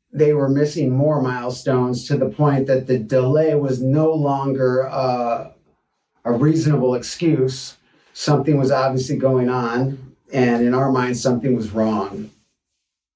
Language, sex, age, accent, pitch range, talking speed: English, male, 40-59, American, 125-145 Hz, 135 wpm